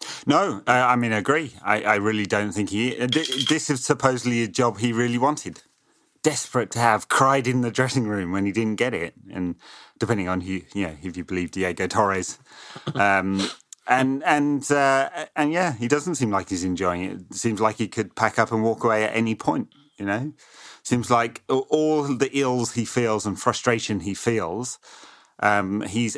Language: English